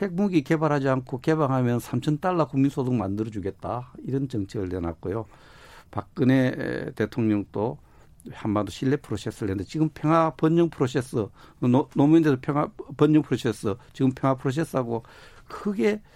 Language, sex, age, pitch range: Korean, male, 60-79, 105-145 Hz